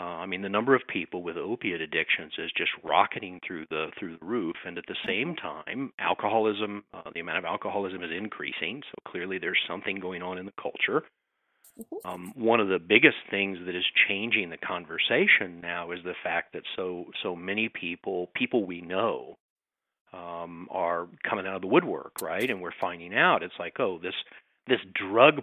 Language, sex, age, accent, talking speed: English, male, 50-69, American, 190 wpm